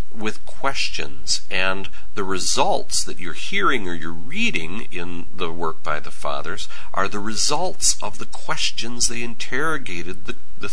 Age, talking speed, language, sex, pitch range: 50-69, 150 wpm, English, male, 85-125 Hz